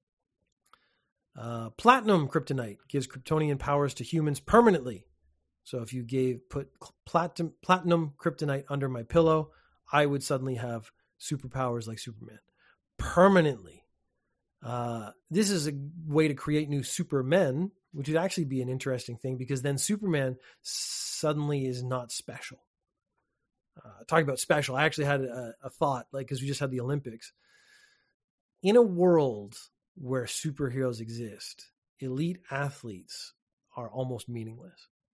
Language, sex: English, male